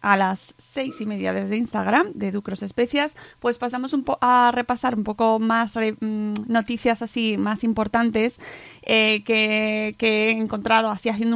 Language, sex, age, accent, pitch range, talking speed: Spanish, female, 20-39, Spanish, 205-235 Hz, 150 wpm